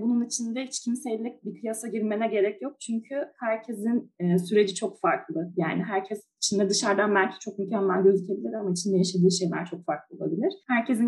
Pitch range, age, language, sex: 190-250 Hz, 20-39, Turkish, female